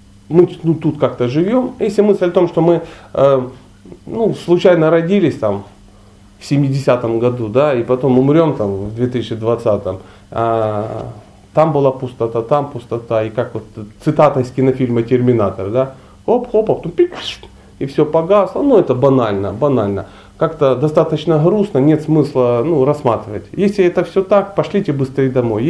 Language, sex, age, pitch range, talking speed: Russian, male, 30-49, 115-170 Hz, 155 wpm